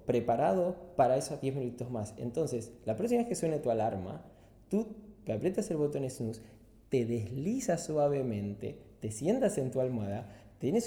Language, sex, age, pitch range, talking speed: English, male, 20-39, 105-130 Hz, 165 wpm